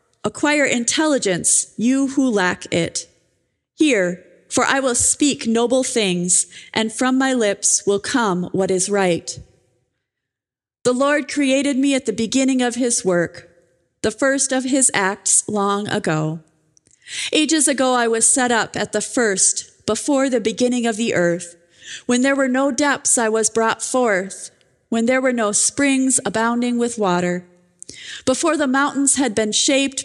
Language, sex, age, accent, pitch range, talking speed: English, female, 30-49, American, 195-265 Hz, 155 wpm